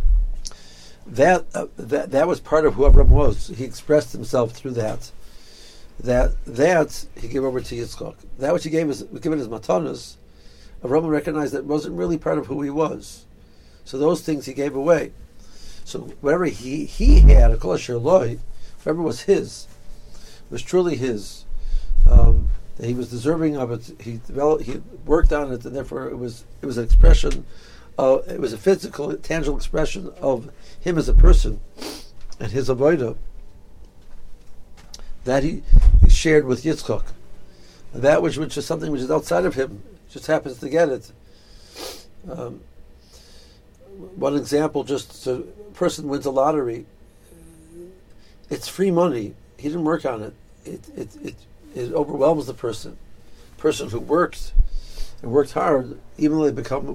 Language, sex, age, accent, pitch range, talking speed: English, male, 60-79, American, 100-150 Hz, 160 wpm